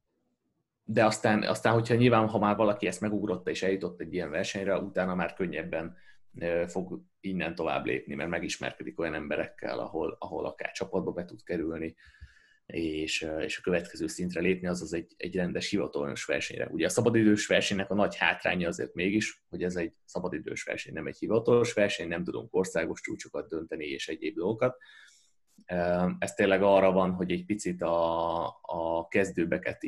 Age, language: 30-49, Hungarian